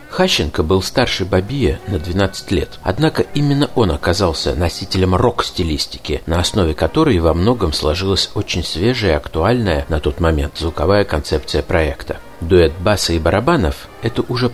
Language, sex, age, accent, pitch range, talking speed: Russian, male, 50-69, native, 80-105 Hz, 145 wpm